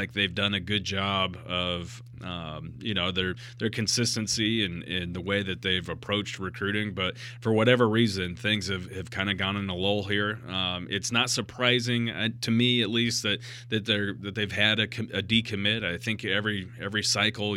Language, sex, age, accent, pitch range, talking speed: English, male, 30-49, American, 95-110 Hz, 200 wpm